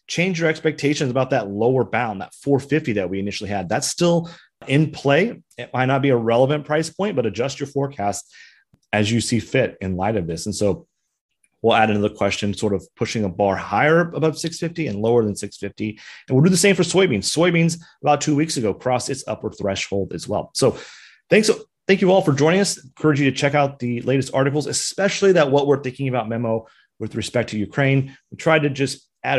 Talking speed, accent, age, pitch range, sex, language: 215 wpm, American, 30-49, 110-150 Hz, male, English